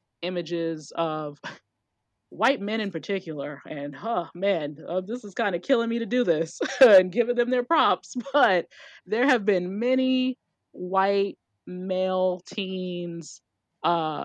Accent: American